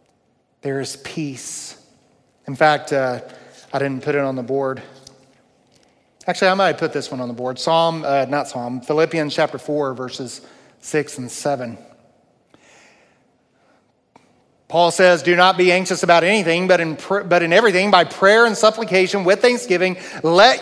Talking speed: 150 wpm